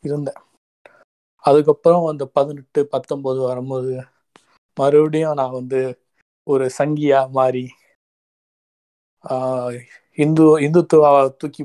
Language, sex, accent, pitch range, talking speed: Tamil, male, native, 130-150 Hz, 80 wpm